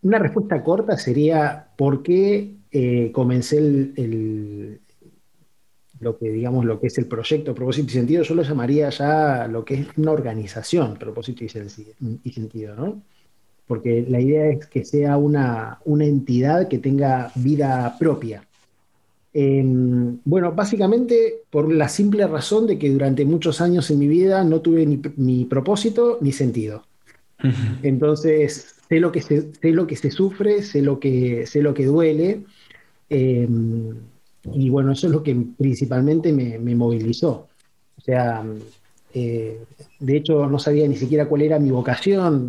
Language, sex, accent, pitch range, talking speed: Spanish, male, Argentinian, 125-155 Hz, 145 wpm